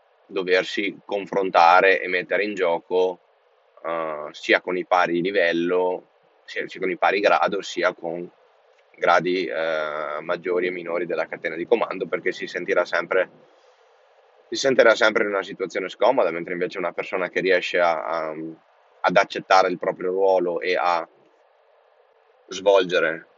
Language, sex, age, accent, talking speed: Italian, male, 20-39, native, 145 wpm